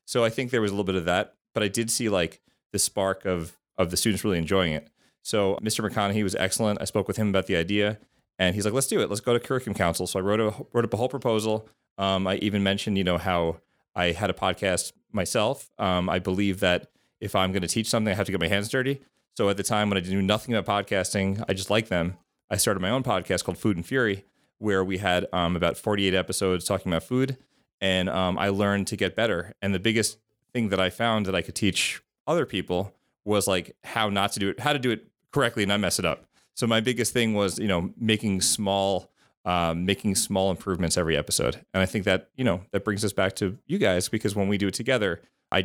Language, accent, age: English, American, 30-49